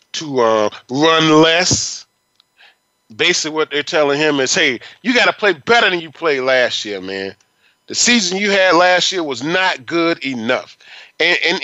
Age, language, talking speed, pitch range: 30-49, English, 175 wpm, 160-255 Hz